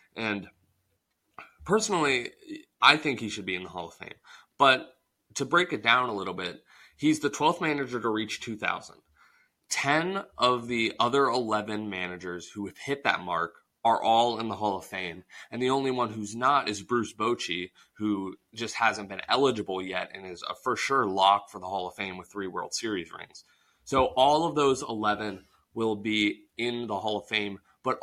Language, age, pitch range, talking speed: English, 20-39, 100-135 Hz, 190 wpm